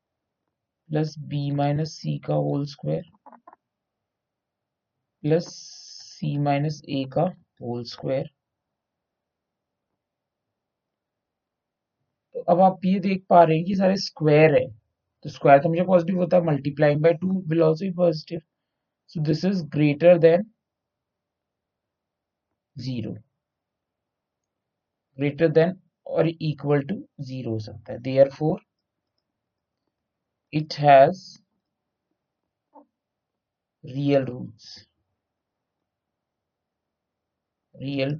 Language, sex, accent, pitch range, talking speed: Hindi, male, native, 140-175 Hz, 70 wpm